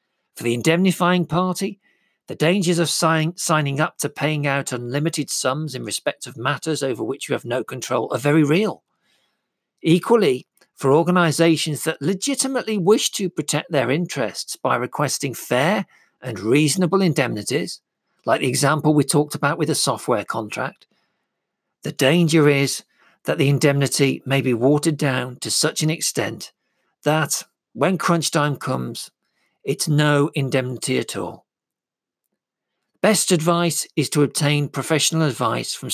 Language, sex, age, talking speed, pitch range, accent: English, male, 50-69, 140 wpm, 140-170 Hz, British